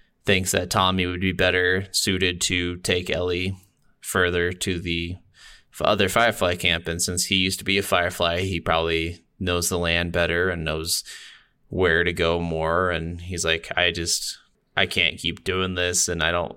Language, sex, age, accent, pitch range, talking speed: English, male, 20-39, American, 85-95 Hz, 180 wpm